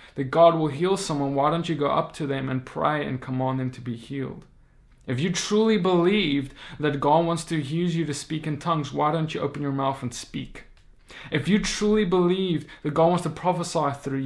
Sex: male